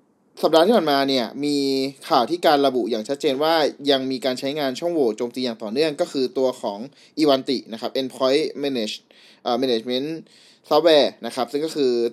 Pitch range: 130-165 Hz